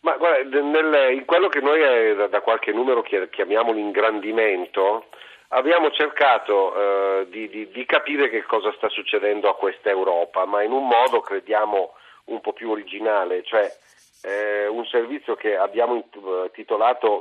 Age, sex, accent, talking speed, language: 40-59, male, native, 155 wpm, Italian